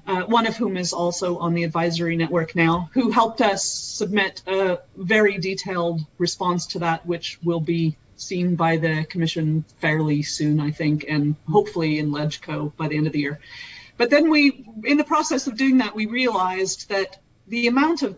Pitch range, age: 175-210 Hz, 40-59